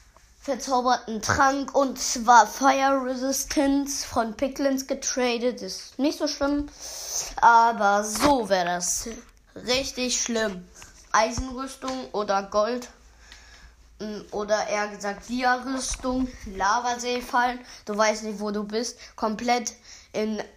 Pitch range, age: 210-285 Hz, 20-39